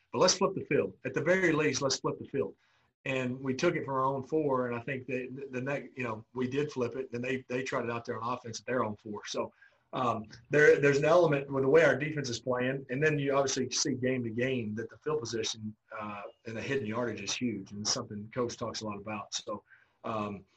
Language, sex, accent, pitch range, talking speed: English, male, American, 110-135 Hz, 255 wpm